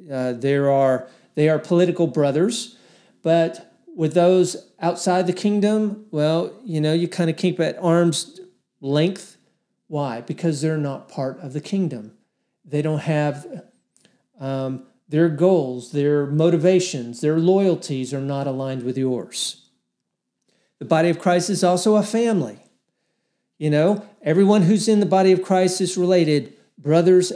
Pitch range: 150-185 Hz